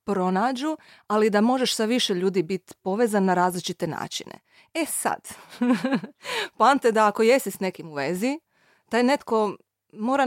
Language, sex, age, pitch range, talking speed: Croatian, female, 30-49, 175-225 Hz, 145 wpm